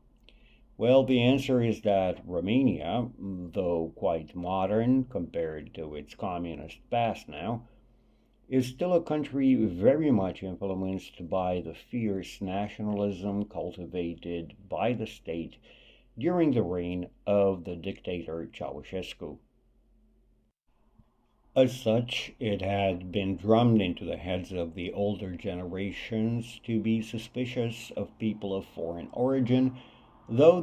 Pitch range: 90-120 Hz